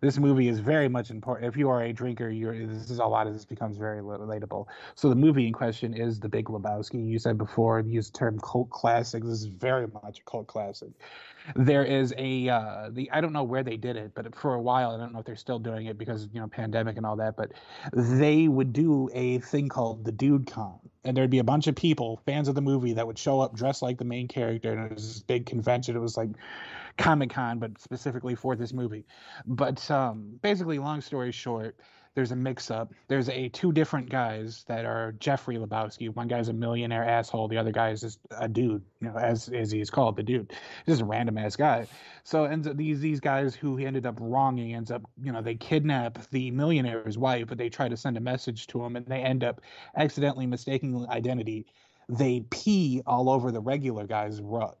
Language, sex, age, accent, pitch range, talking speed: English, male, 30-49, American, 115-135 Hz, 230 wpm